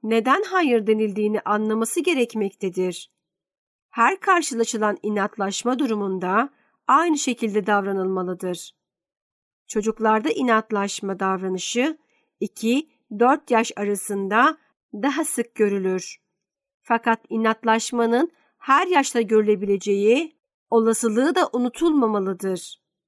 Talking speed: 75 wpm